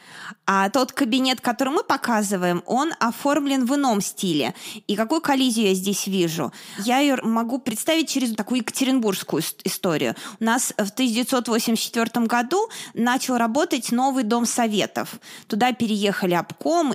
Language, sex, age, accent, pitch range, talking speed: Russian, female, 20-39, native, 205-265 Hz, 140 wpm